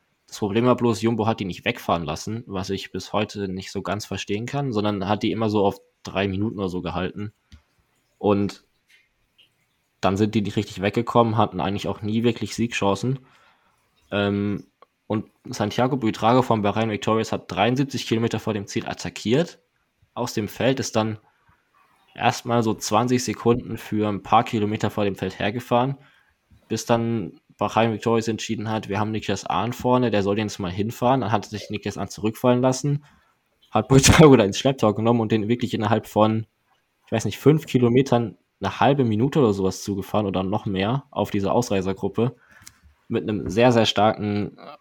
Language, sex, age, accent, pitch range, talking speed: German, male, 20-39, German, 100-120 Hz, 175 wpm